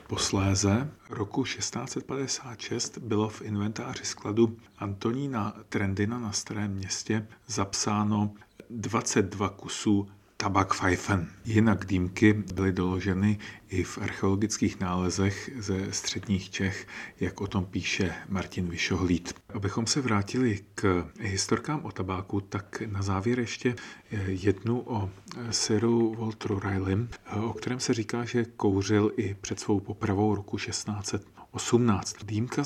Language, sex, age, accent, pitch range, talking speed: Czech, male, 40-59, native, 100-115 Hz, 115 wpm